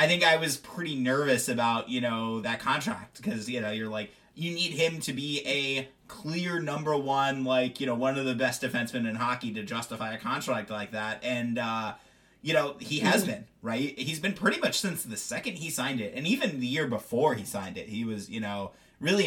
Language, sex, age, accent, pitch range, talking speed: English, male, 30-49, American, 120-155 Hz, 225 wpm